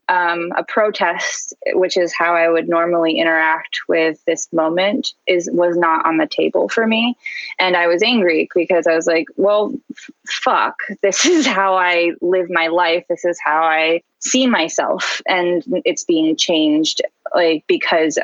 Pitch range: 170-210 Hz